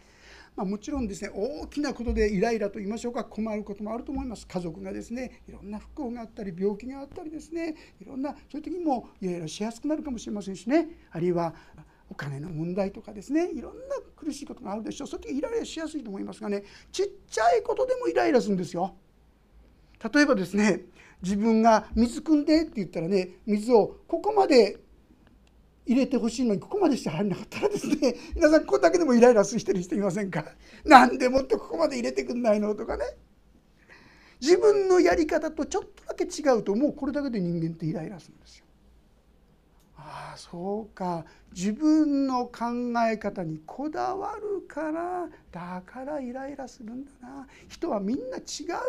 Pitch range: 205-310 Hz